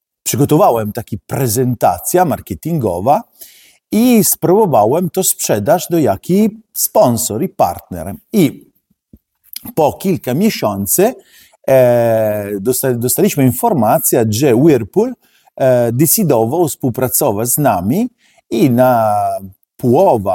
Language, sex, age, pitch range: Polish, male, 50-69, 110-145 Hz